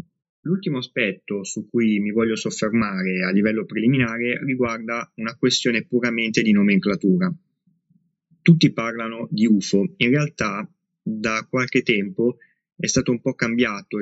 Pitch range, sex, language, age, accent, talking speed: 110-175 Hz, male, Italian, 20-39, native, 130 wpm